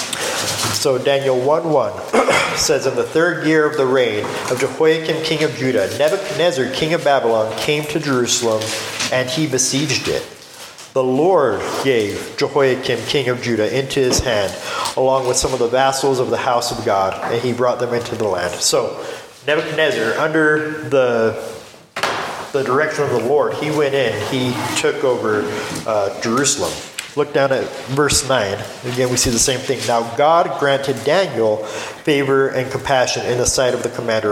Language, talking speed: English, 170 wpm